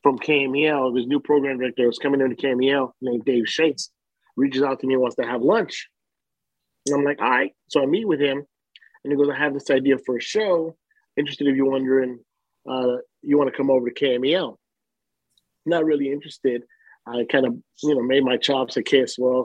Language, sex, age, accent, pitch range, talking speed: English, male, 30-49, American, 130-150 Hz, 205 wpm